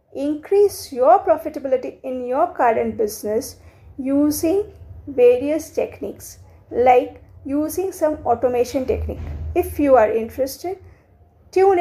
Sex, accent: female, Indian